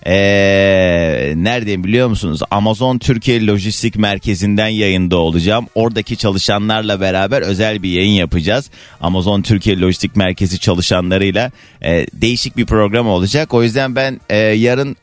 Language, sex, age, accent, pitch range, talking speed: Turkish, male, 30-49, native, 100-145 Hz, 130 wpm